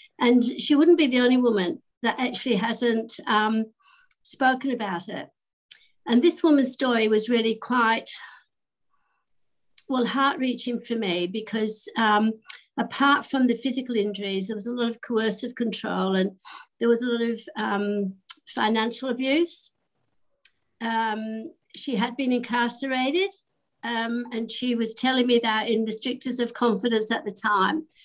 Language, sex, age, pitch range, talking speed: English, female, 60-79, 220-255 Hz, 150 wpm